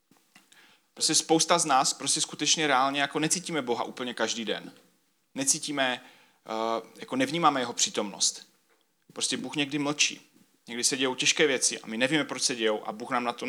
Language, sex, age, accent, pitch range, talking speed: Czech, male, 30-49, native, 115-145 Hz, 170 wpm